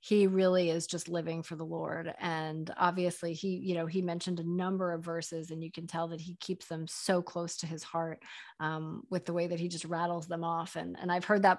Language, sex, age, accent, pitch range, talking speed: English, female, 30-49, American, 165-180 Hz, 245 wpm